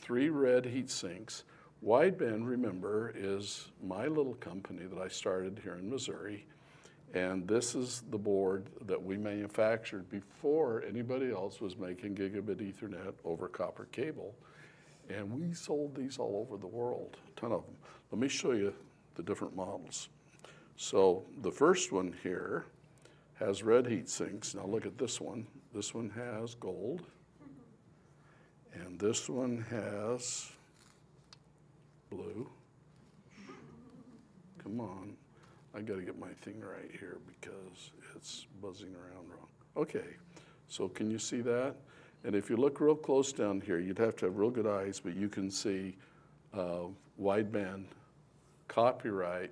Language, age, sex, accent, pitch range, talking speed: English, 60-79, male, American, 100-130 Hz, 145 wpm